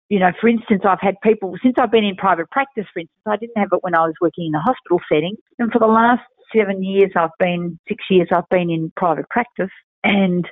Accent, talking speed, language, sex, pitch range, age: Australian, 245 wpm, English, female, 180-235 Hz, 50-69